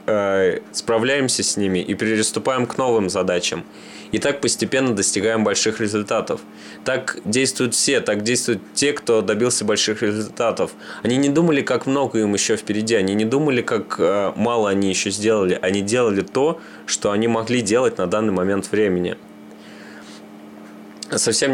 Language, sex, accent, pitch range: Russian, male, native, 100-110 Hz